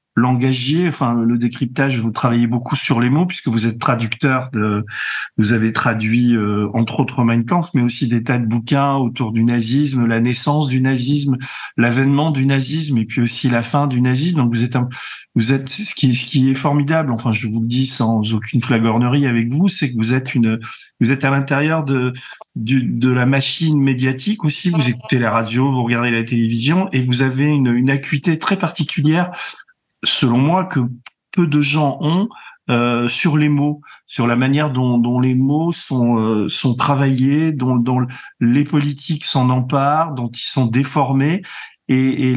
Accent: French